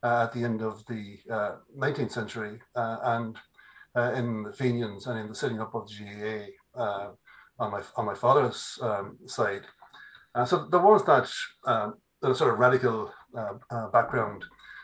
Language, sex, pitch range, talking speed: English, male, 115-140 Hz, 180 wpm